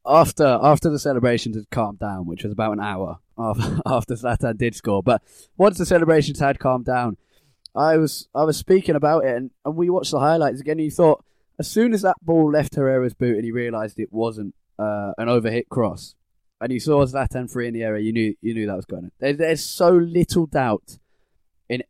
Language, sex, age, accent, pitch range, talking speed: English, male, 20-39, British, 110-145 Hz, 220 wpm